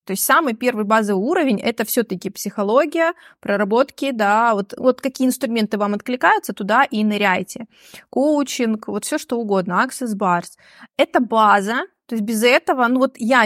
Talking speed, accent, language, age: 160 wpm, native, Russian, 20-39